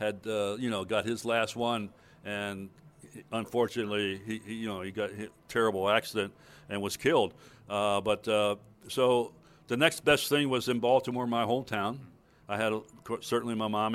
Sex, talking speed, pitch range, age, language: male, 175 wpm, 105-125 Hz, 60-79, English